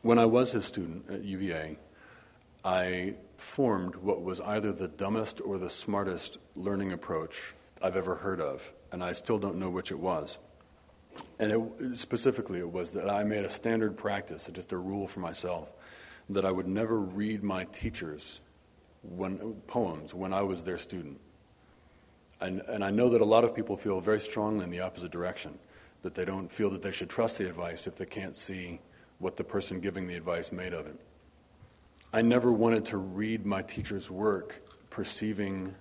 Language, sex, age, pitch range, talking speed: English, male, 40-59, 90-105 Hz, 180 wpm